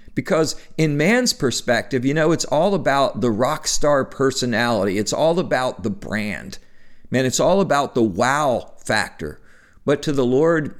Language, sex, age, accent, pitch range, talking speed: English, male, 50-69, American, 110-145 Hz, 160 wpm